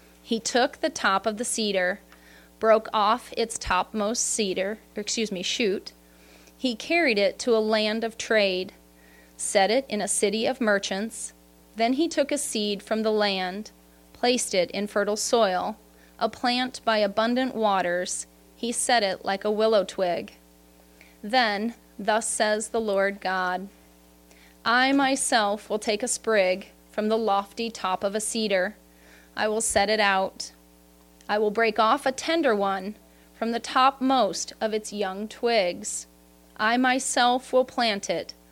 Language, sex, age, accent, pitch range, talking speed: English, female, 30-49, American, 180-235 Hz, 155 wpm